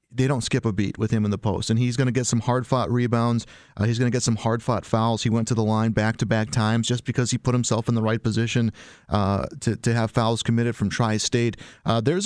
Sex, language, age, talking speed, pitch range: male, English, 30-49, 250 wpm, 110-130 Hz